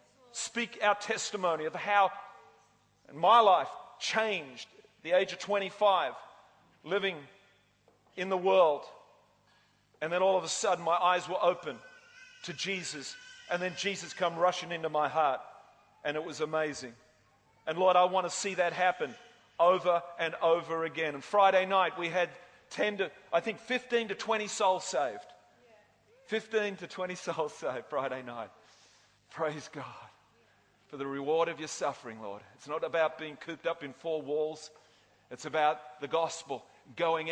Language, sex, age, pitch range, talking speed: English, male, 40-59, 145-185 Hz, 155 wpm